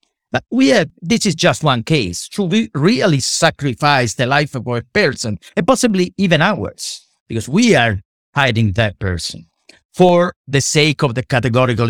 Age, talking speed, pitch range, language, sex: 50-69, 160 wpm, 110-165 Hz, English, male